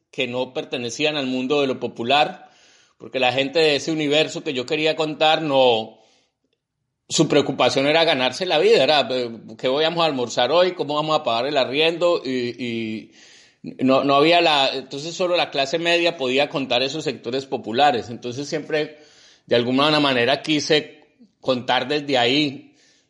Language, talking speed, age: Spanish, 160 wpm, 30-49